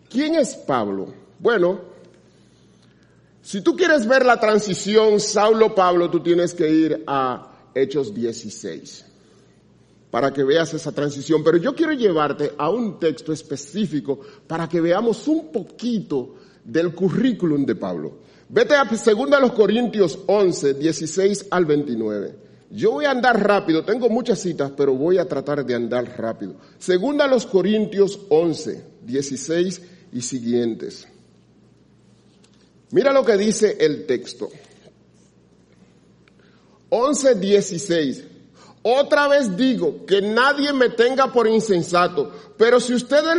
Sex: male